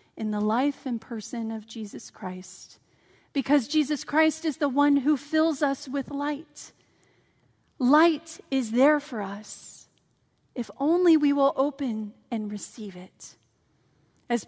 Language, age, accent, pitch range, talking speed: English, 40-59, American, 230-305 Hz, 135 wpm